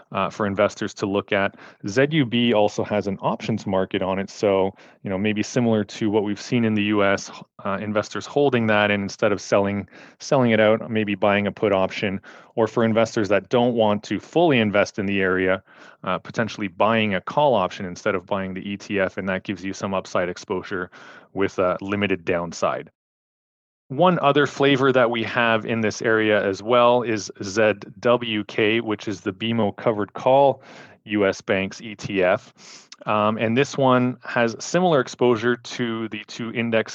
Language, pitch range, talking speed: English, 100-120 Hz, 175 wpm